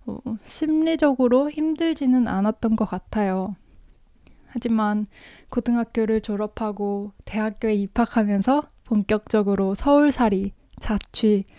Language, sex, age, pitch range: Korean, female, 20-39, 205-255 Hz